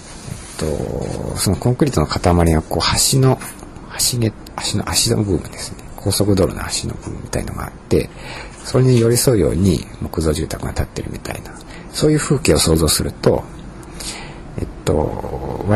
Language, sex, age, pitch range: Japanese, male, 50-69, 80-110 Hz